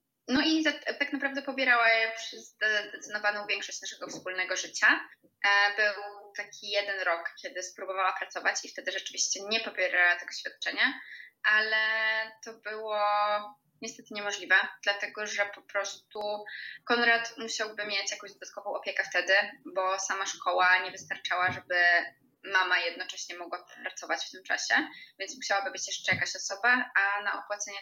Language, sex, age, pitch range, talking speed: Polish, female, 20-39, 185-220 Hz, 140 wpm